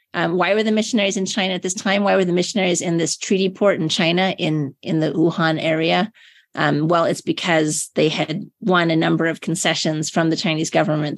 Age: 30-49